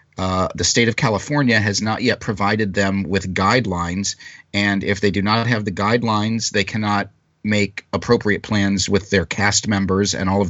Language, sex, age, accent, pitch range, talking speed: English, male, 30-49, American, 90-105 Hz, 185 wpm